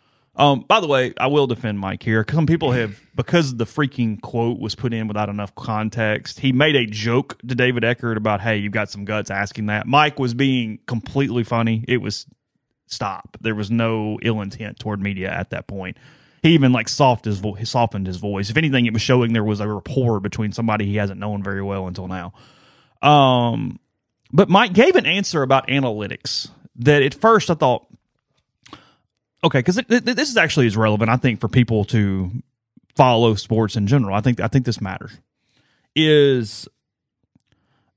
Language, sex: English, male